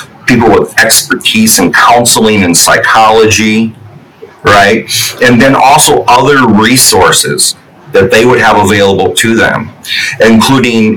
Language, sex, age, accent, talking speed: English, male, 40-59, American, 115 wpm